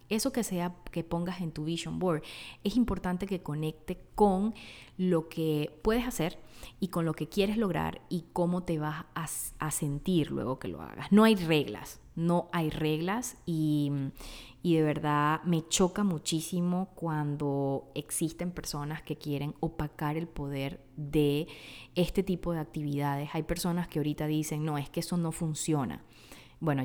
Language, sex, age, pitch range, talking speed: Spanish, female, 20-39, 140-175 Hz, 160 wpm